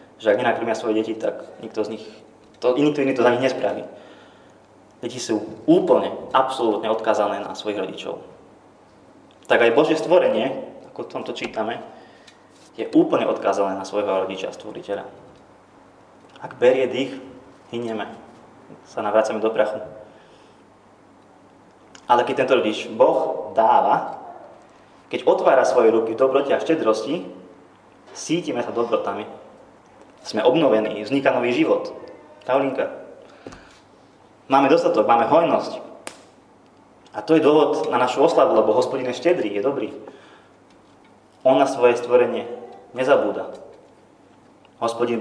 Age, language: 20-39, Slovak